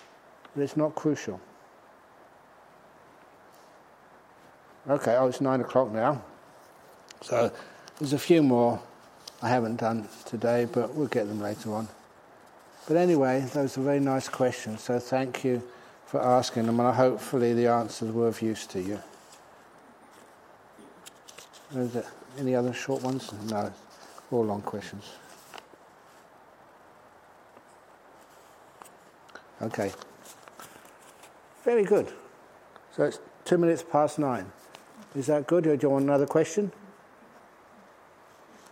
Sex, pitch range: male, 120-150 Hz